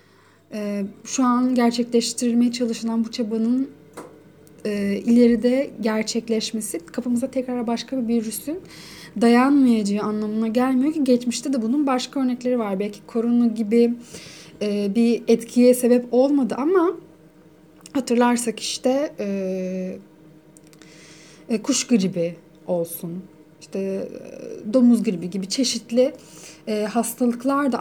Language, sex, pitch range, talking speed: Turkish, female, 185-255 Hz, 105 wpm